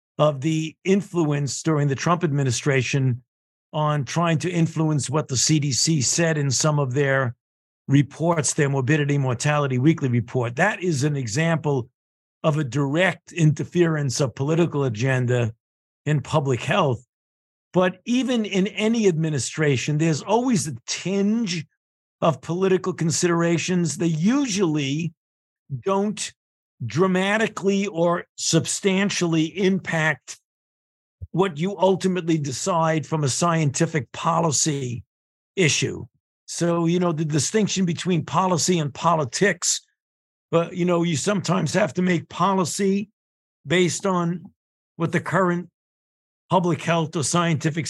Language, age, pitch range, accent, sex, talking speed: English, 50-69, 140-180 Hz, American, male, 120 wpm